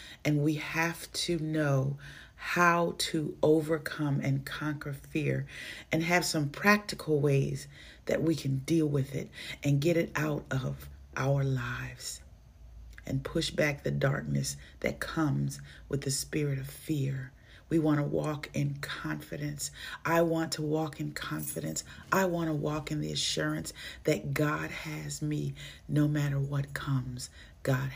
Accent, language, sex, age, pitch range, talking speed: American, English, female, 40-59, 130-165 Hz, 145 wpm